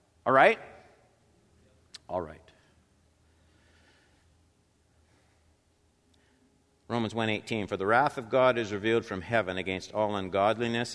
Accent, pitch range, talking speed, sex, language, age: American, 90-120 Hz, 100 wpm, male, English, 60-79